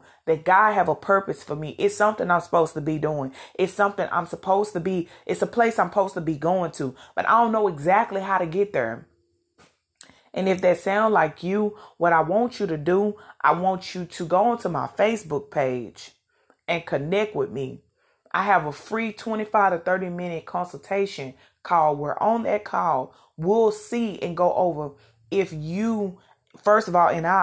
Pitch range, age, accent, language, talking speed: 155-200 Hz, 30-49, American, English, 195 wpm